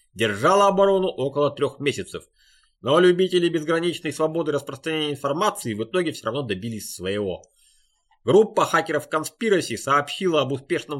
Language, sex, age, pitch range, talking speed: Russian, male, 30-49, 115-170 Hz, 125 wpm